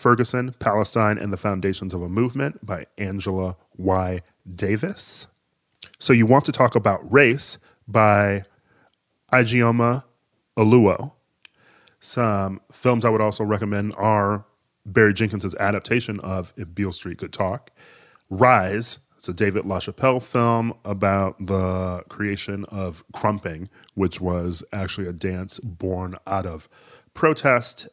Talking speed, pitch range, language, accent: 125 wpm, 95-115 Hz, English, American